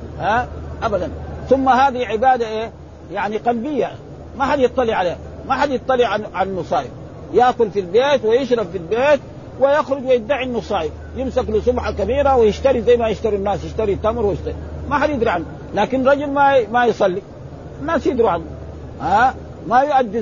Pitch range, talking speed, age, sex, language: 200-265 Hz, 165 wpm, 50-69, male, Arabic